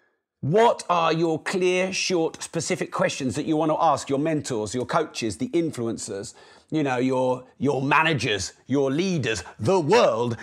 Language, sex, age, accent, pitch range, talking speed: English, male, 40-59, British, 150-230 Hz, 155 wpm